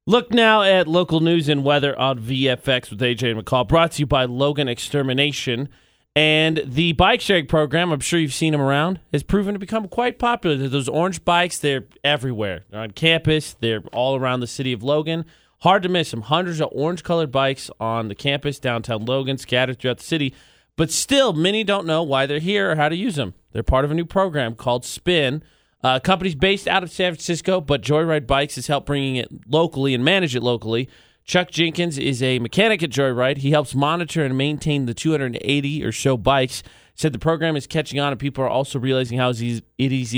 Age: 30-49